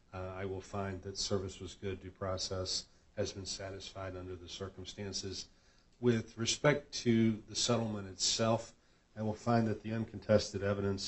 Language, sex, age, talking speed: English, male, 50-69, 155 wpm